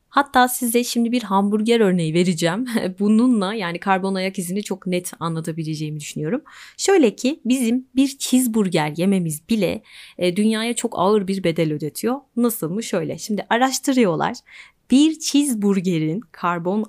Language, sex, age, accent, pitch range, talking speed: Turkish, female, 30-49, native, 170-230 Hz, 140 wpm